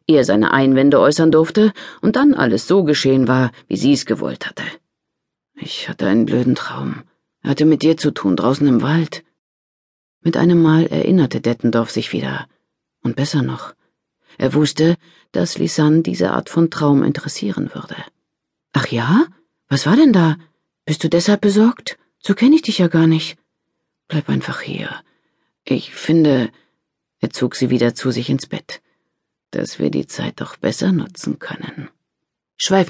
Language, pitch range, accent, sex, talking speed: German, 130-170 Hz, German, female, 160 wpm